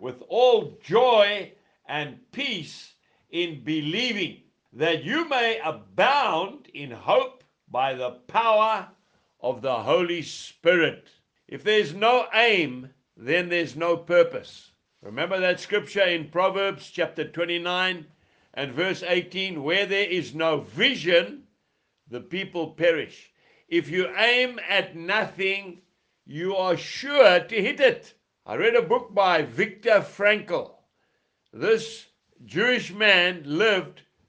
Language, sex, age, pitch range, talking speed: English, male, 60-79, 165-230 Hz, 120 wpm